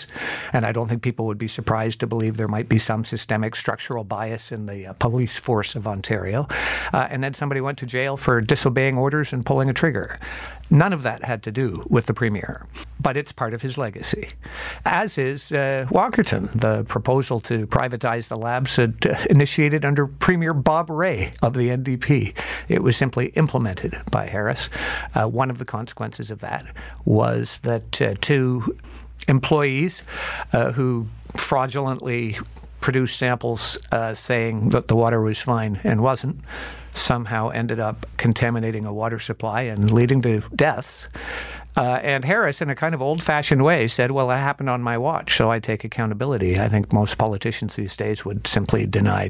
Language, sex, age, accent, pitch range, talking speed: English, male, 60-79, American, 110-135 Hz, 175 wpm